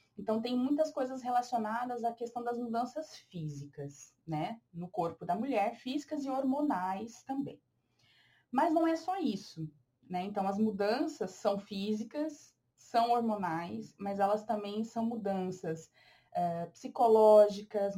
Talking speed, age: 125 wpm, 20-39